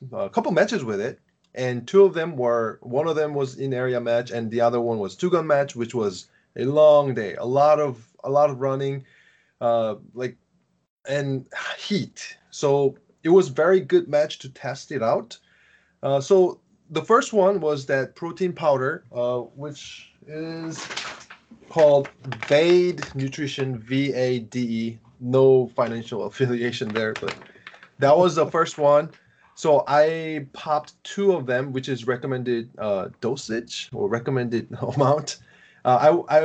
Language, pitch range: English, 125-155 Hz